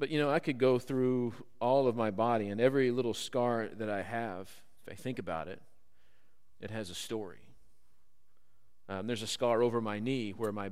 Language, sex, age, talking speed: English, male, 40-59, 200 wpm